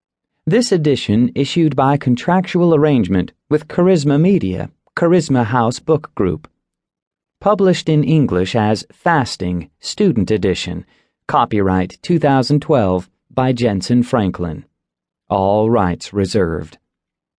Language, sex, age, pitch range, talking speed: English, male, 40-59, 100-155 Hz, 95 wpm